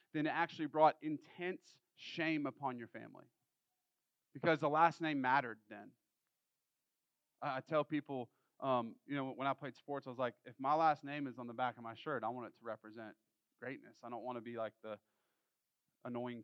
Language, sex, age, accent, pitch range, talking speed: English, male, 30-49, American, 125-160 Hz, 195 wpm